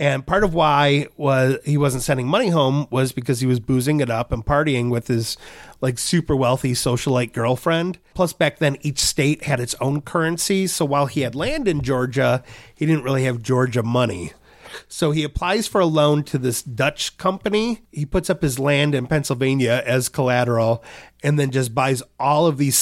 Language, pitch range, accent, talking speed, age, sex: English, 130-185 Hz, American, 195 wpm, 30-49, male